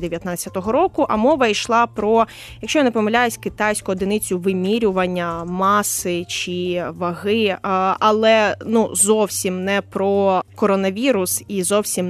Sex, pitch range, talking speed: female, 190-245 Hz, 120 wpm